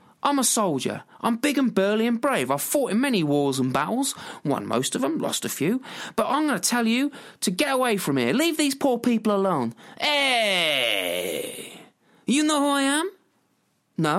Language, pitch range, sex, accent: English, 175-280 Hz, male, British